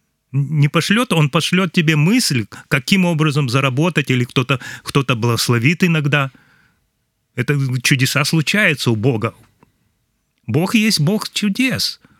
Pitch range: 125-160 Hz